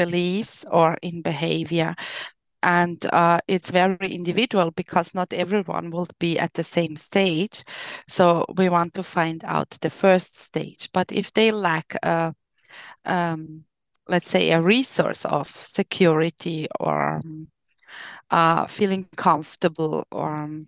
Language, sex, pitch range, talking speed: English, female, 170-200 Hz, 130 wpm